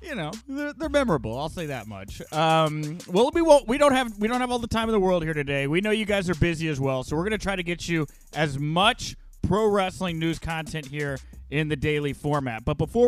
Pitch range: 150-195 Hz